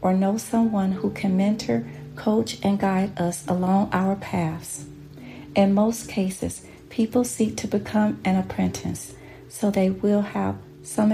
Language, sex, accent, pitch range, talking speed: English, female, American, 145-210 Hz, 145 wpm